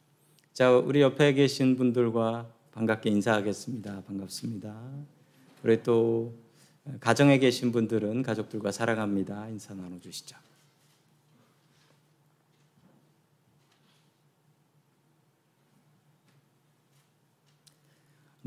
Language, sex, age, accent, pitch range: Korean, male, 50-69, native, 120-155 Hz